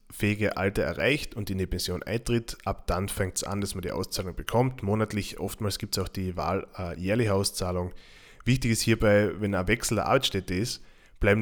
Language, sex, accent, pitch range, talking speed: German, male, German, 95-105 Hz, 200 wpm